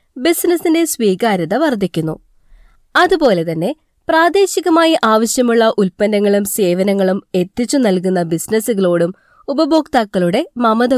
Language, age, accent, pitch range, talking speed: Malayalam, 20-39, native, 195-280 Hz, 70 wpm